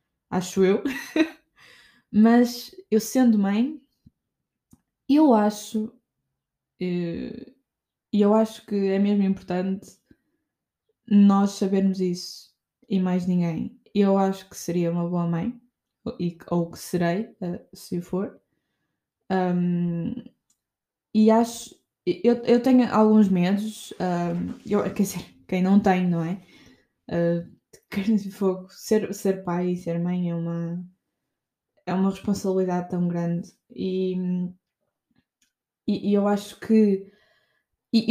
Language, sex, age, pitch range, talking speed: Portuguese, female, 10-29, 180-225 Hz, 115 wpm